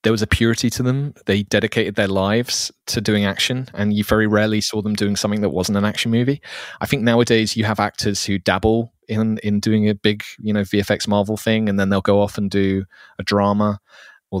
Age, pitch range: 30-49, 95-115 Hz